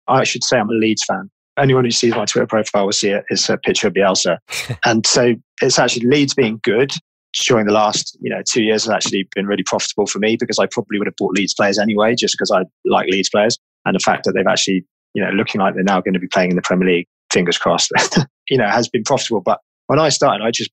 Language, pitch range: English, 105-125 Hz